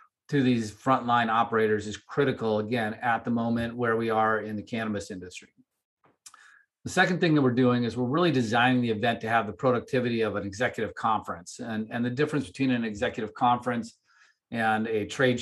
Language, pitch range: English, 110-130 Hz